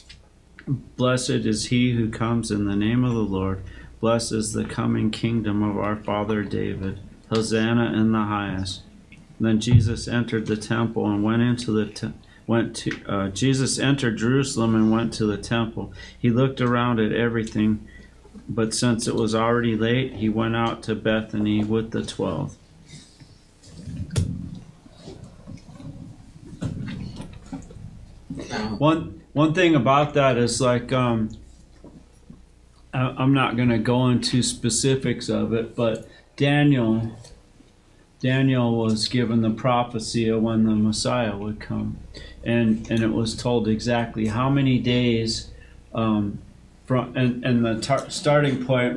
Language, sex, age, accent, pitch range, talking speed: English, male, 40-59, American, 110-125 Hz, 135 wpm